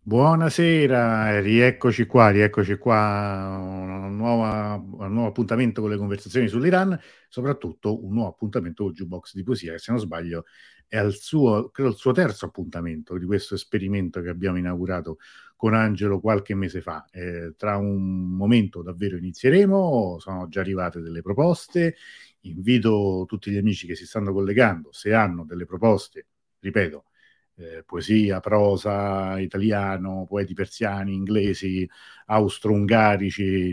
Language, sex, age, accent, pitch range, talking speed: Italian, male, 50-69, native, 95-115 Hz, 135 wpm